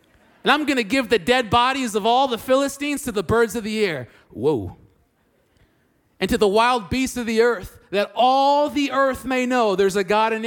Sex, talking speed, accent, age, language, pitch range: male, 210 wpm, American, 30-49, English, 175-245 Hz